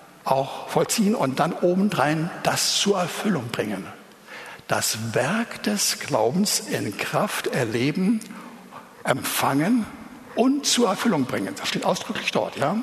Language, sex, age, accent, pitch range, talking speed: German, male, 60-79, German, 150-220 Hz, 120 wpm